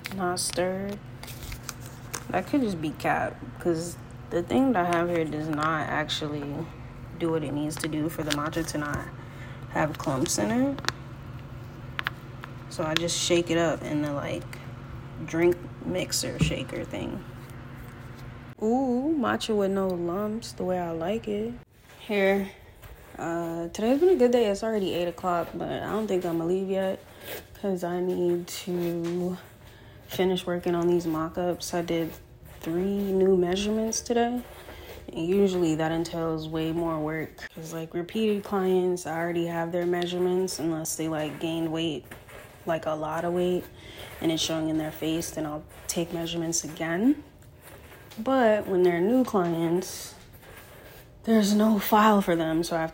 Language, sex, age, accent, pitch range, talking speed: English, female, 20-39, American, 155-180 Hz, 155 wpm